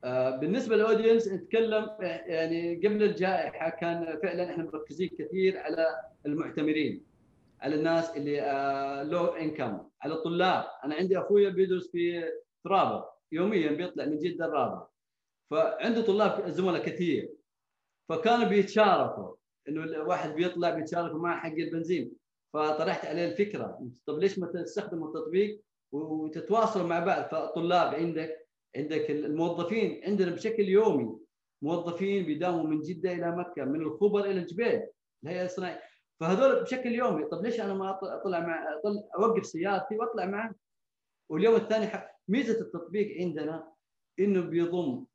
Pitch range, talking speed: 160-205 Hz, 125 wpm